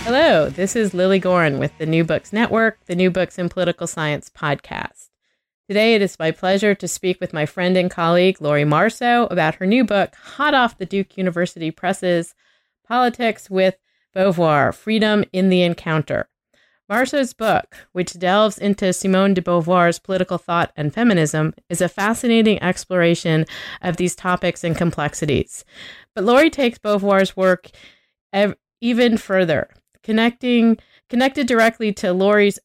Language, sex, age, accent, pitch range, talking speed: English, female, 30-49, American, 170-210 Hz, 150 wpm